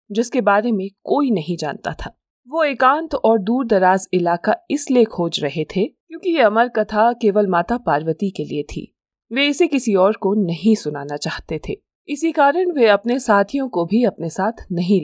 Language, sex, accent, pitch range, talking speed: Hindi, female, native, 185-245 Hz, 180 wpm